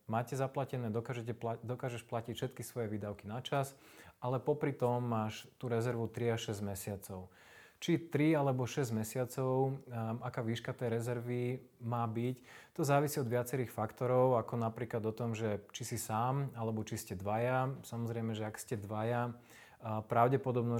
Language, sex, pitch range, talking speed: Slovak, male, 110-125 Hz, 160 wpm